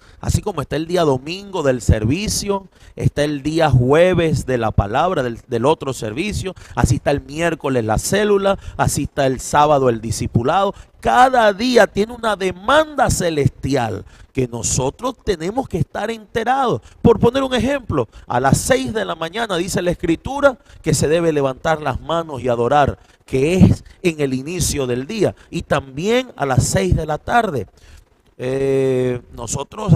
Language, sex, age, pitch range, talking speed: Spanish, male, 30-49, 125-190 Hz, 160 wpm